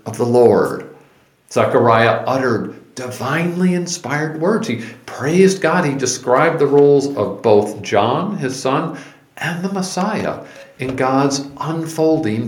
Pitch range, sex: 120-185 Hz, male